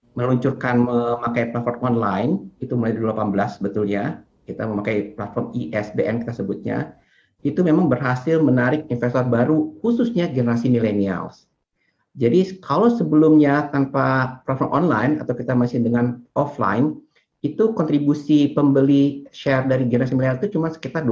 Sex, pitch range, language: male, 125-160 Hz, Indonesian